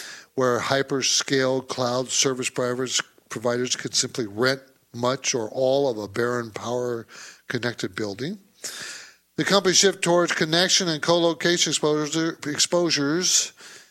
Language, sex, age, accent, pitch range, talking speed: English, male, 60-79, American, 120-150 Hz, 110 wpm